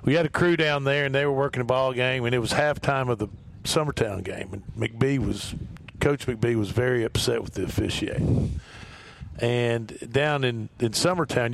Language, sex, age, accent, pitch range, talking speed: English, male, 50-69, American, 110-135 Hz, 190 wpm